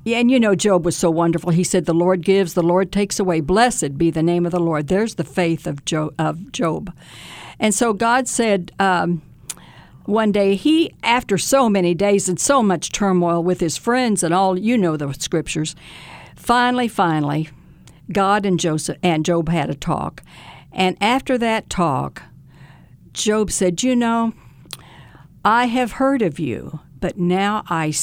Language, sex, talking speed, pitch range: English, female, 165 wpm, 170-220 Hz